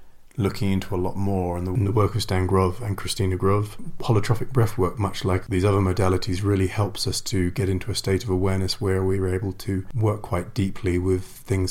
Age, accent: 30-49, British